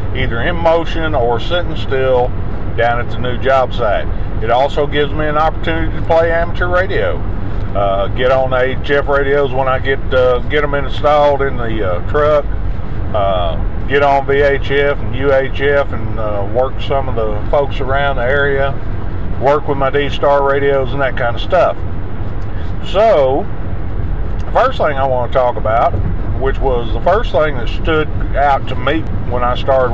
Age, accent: 50-69, American